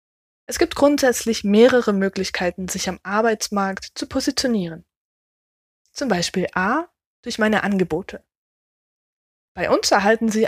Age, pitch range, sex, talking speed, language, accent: 20-39, 185-240 Hz, female, 115 wpm, German, German